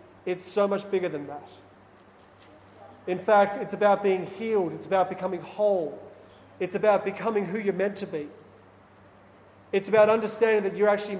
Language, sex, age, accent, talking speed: English, male, 30-49, Australian, 160 wpm